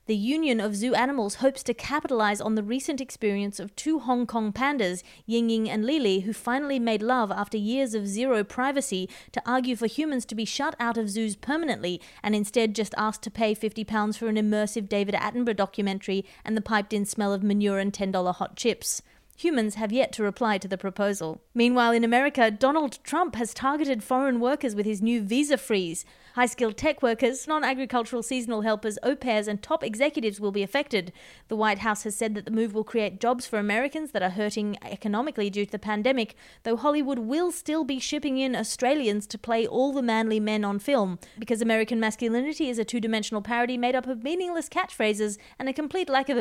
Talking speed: 200 wpm